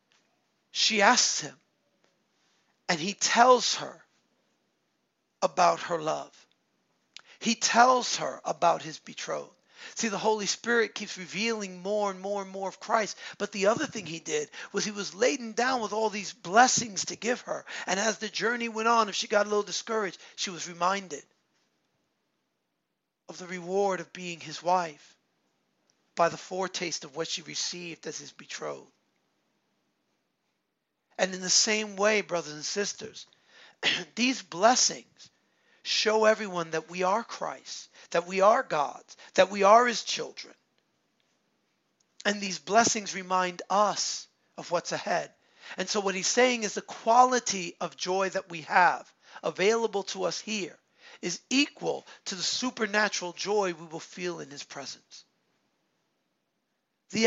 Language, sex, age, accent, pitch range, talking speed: English, male, 40-59, American, 180-225 Hz, 150 wpm